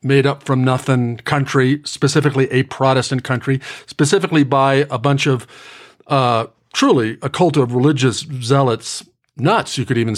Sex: male